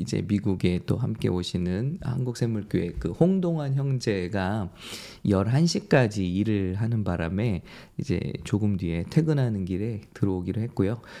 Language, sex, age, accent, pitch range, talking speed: English, male, 20-39, Korean, 95-135 Hz, 105 wpm